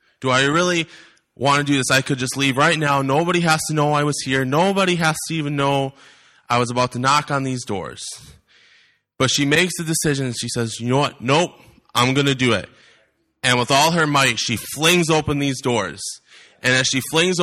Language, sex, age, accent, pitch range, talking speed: English, male, 20-39, American, 115-140 Hz, 220 wpm